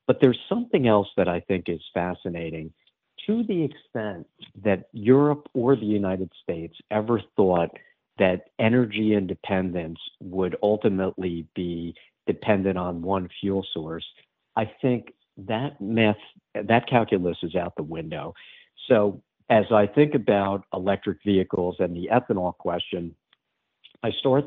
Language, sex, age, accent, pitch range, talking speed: English, male, 50-69, American, 90-110 Hz, 130 wpm